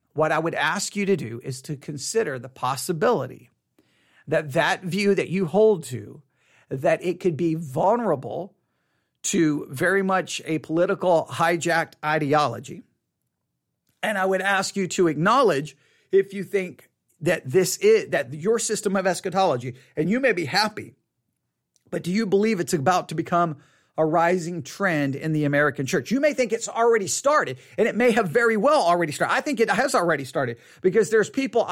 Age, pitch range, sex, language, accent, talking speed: 40-59, 155-205 Hz, male, English, American, 175 wpm